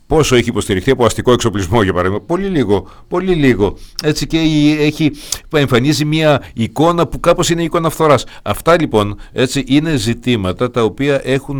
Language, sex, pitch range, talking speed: Greek, male, 90-135 Hz, 165 wpm